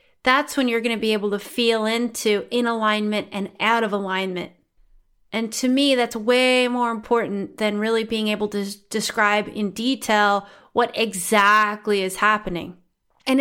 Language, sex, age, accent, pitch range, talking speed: English, female, 30-49, American, 215-255 Hz, 160 wpm